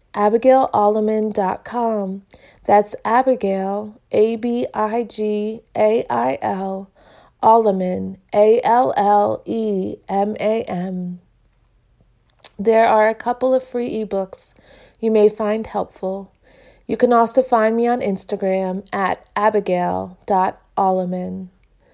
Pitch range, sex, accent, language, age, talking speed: 195-230 Hz, female, American, English, 30-49, 105 wpm